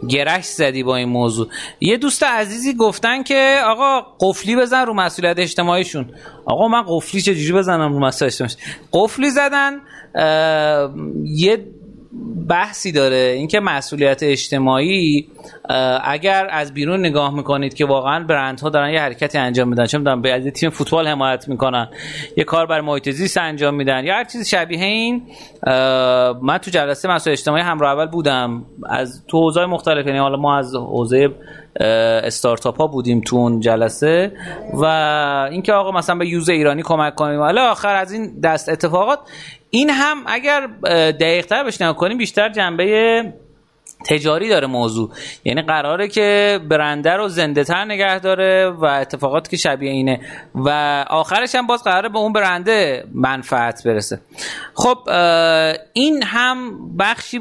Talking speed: 145 wpm